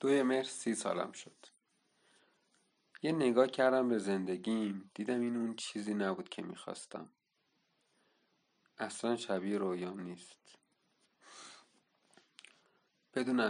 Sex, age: male, 40-59